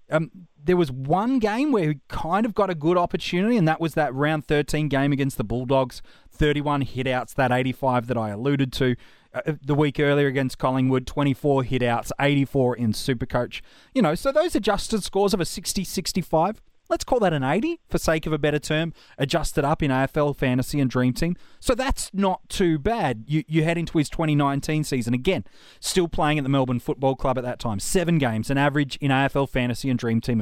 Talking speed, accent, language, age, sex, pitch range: 205 wpm, Australian, English, 30-49, male, 130-175 Hz